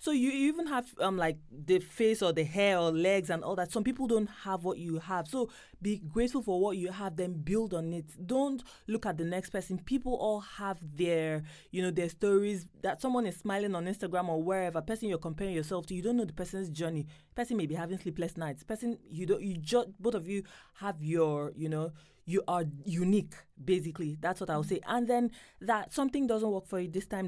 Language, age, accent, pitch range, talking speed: English, 20-39, Nigerian, 165-210 Hz, 235 wpm